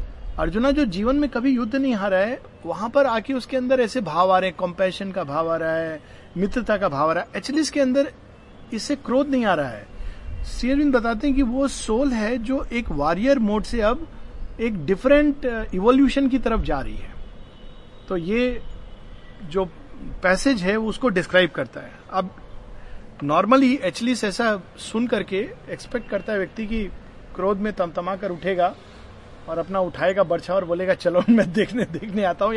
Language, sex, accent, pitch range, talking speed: Hindi, male, native, 155-230 Hz, 180 wpm